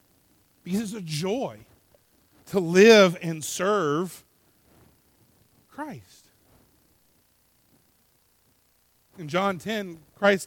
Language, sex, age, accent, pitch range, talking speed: English, male, 40-59, American, 140-205 Hz, 75 wpm